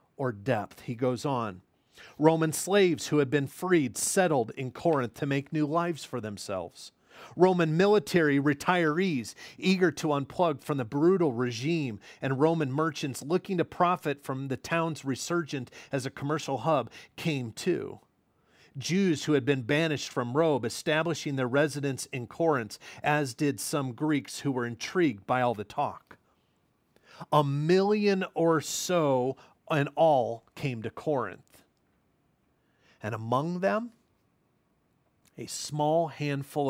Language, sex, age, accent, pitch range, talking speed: English, male, 40-59, American, 120-160 Hz, 135 wpm